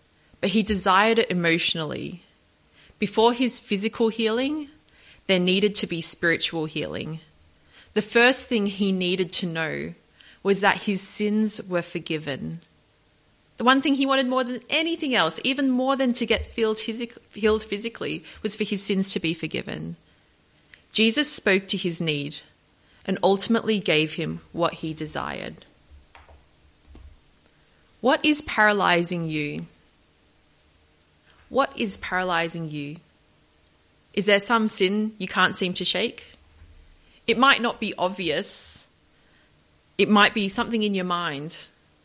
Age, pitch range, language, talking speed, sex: 30-49, 155-220 Hz, English, 135 wpm, female